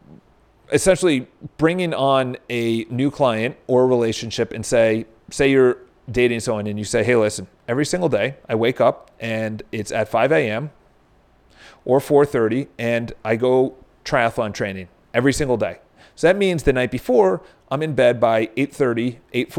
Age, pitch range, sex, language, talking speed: 30-49, 115-140 Hz, male, English, 160 wpm